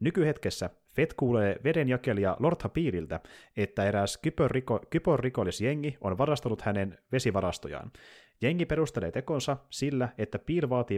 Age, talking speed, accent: 30-49, 120 wpm, native